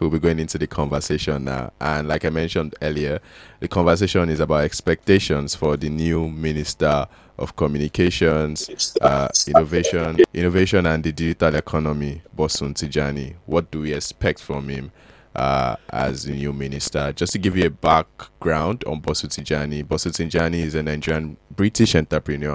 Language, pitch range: English, 70-80 Hz